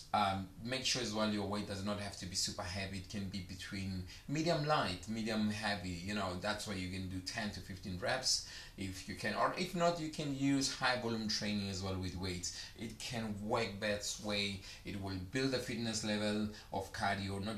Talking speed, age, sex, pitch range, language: 215 wpm, 30-49, male, 95-110 Hz, English